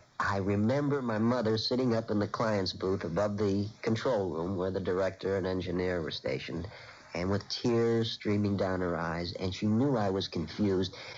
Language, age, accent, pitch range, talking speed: English, 50-69, American, 100-125 Hz, 185 wpm